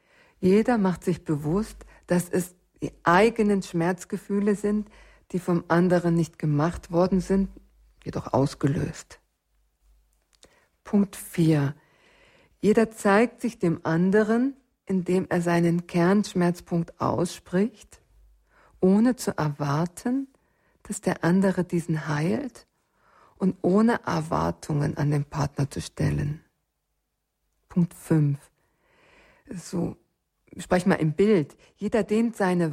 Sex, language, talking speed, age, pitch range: female, German, 105 wpm, 50-69, 160-205 Hz